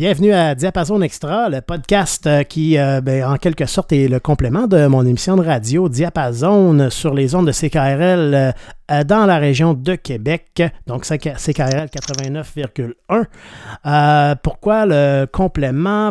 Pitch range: 135-170 Hz